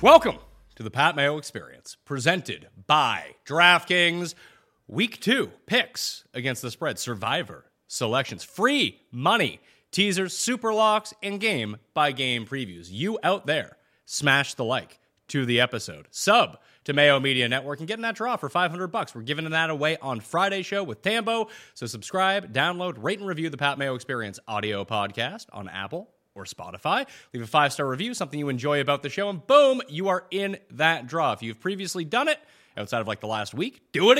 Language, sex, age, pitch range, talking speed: English, male, 30-49, 125-195 Hz, 180 wpm